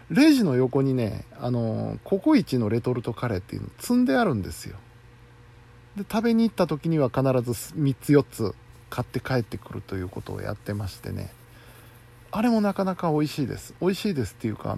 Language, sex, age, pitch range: Japanese, male, 50-69, 110-130 Hz